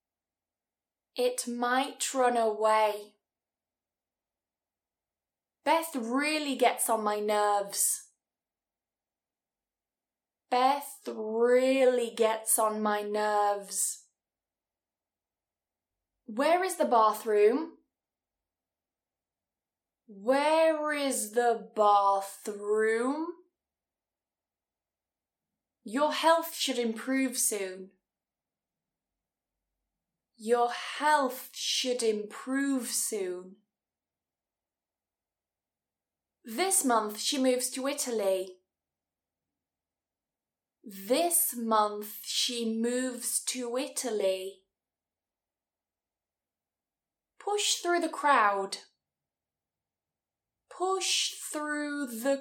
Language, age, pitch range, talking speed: English, 20-39, 205-275 Hz, 60 wpm